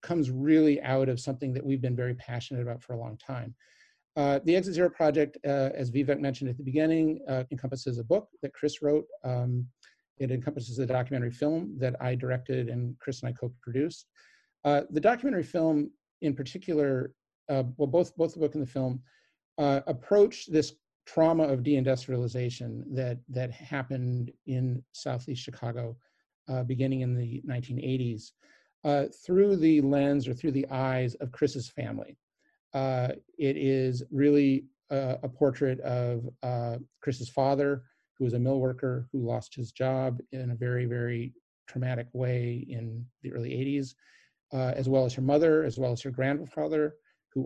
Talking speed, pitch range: 170 wpm, 125-145 Hz